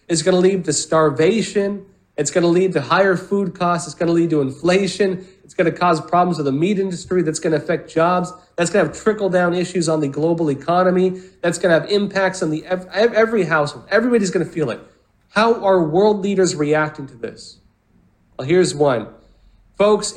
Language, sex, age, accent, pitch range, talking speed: English, male, 40-59, American, 155-200 Hz, 210 wpm